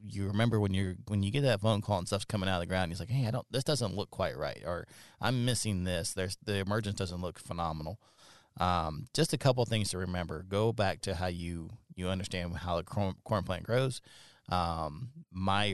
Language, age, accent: English, 30-49, American